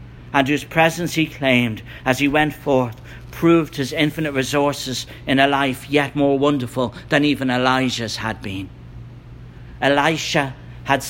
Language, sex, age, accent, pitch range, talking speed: English, male, 60-79, British, 120-155 Hz, 140 wpm